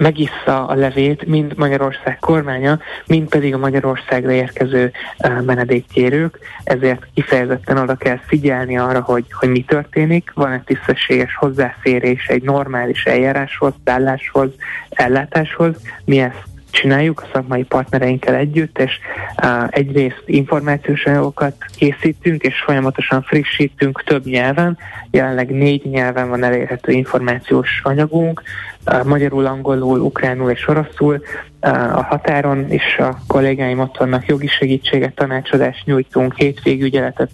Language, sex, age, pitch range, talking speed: Hungarian, male, 30-49, 130-145 Hz, 120 wpm